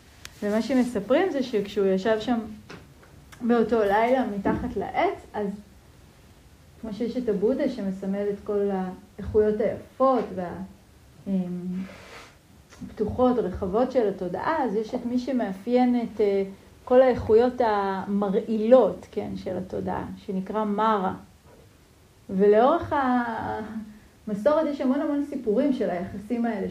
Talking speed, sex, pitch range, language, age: 110 wpm, female, 195-235 Hz, Hebrew, 30-49